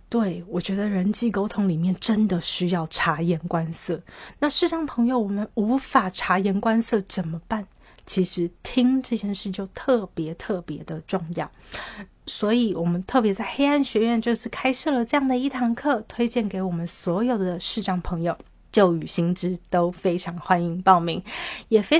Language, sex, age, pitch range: Chinese, female, 30-49, 180-235 Hz